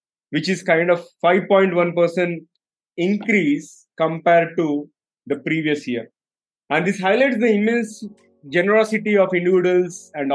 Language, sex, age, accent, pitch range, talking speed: English, male, 20-39, Indian, 145-185 Hz, 115 wpm